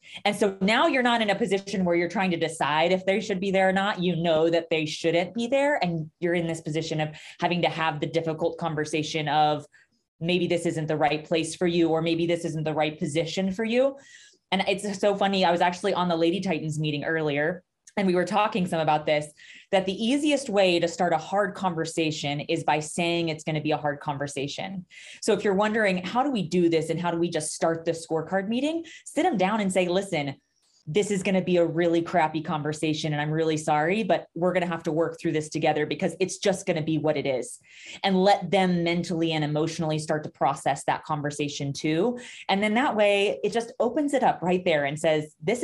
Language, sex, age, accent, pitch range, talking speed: English, female, 20-39, American, 155-195 Hz, 235 wpm